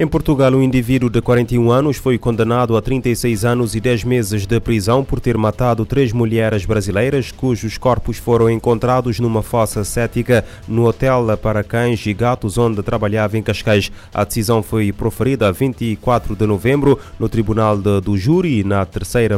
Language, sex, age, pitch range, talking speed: Portuguese, male, 20-39, 105-120 Hz, 170 wpm